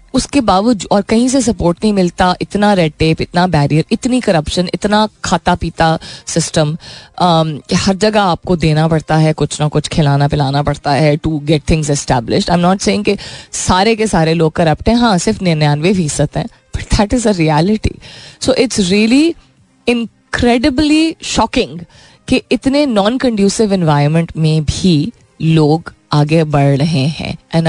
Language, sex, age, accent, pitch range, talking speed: Hindi, female, 20-39, native, 150-205 Hz, 155 wpm